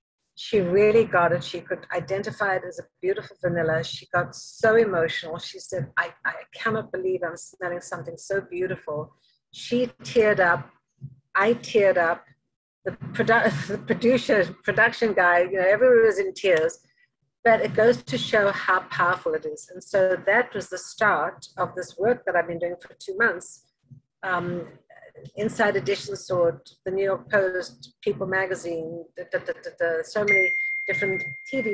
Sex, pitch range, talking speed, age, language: female, 175-215 Hz, 165 wpm, 60-79, English